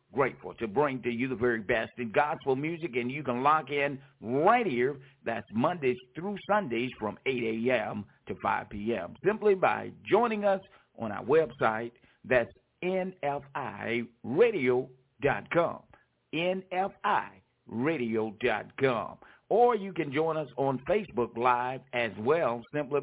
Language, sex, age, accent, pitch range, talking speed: English, male, 60-79, American, 115-160 Hz, 130 wpm